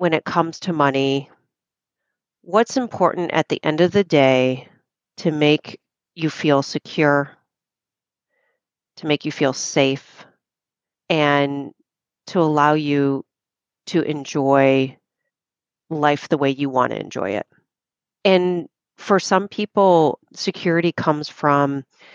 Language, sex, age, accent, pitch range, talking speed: English, female, 40-59, American, 145-180 Hz, 120 wpm